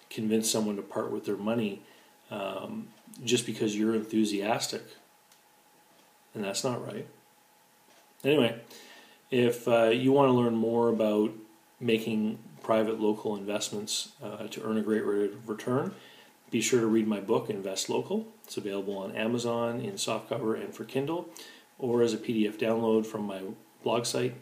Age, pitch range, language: 40-59, 105-120 Hz, English